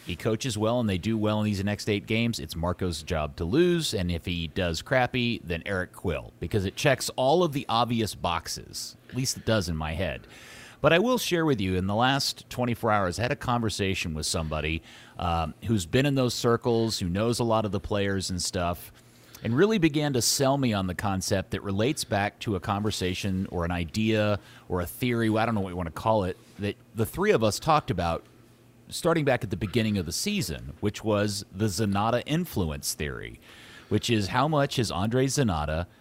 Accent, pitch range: American, 95-130 Hz